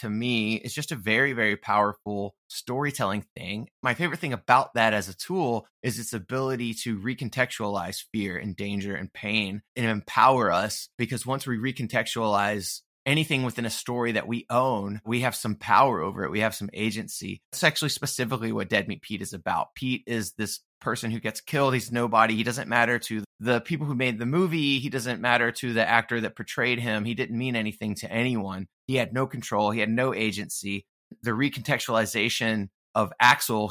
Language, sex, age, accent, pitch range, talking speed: English, male, 20-39, American, 110-130 Hz, 190 wpm